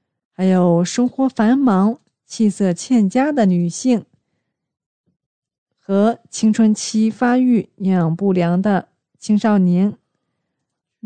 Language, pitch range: Chinese, 180-235 Hz